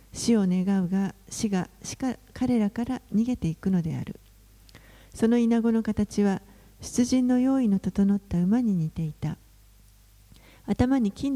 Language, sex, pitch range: Japanese, female, 175-230 Hz